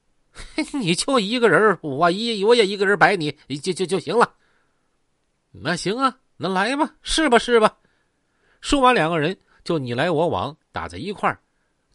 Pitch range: 160-240 Hz